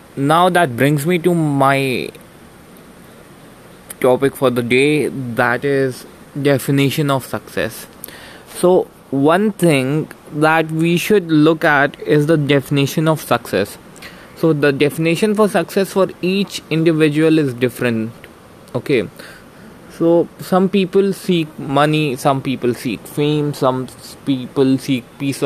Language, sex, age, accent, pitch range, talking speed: Hindi, male, 20-39, native, 135-165 Hz, 125 wpm